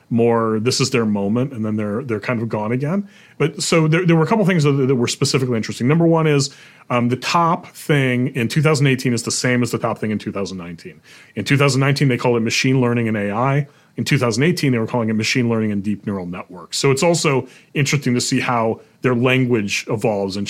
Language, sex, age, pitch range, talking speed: English, male, 30-49, 110-140 Hz, 225 wpm